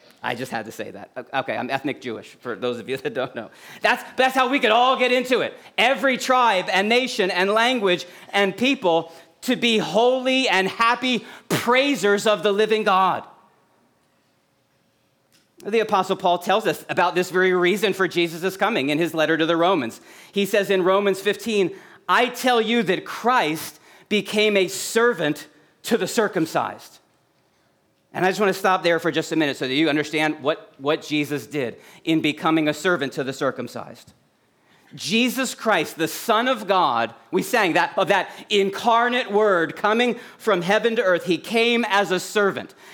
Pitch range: 170-230 Hz